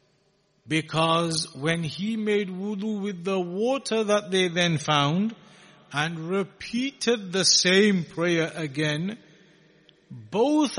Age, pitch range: 50-69, 165-215 Hz